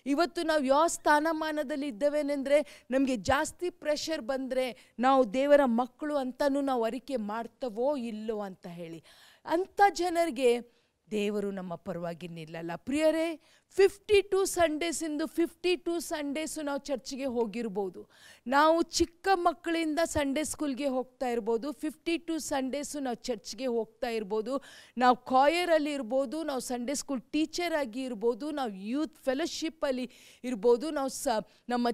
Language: Kannada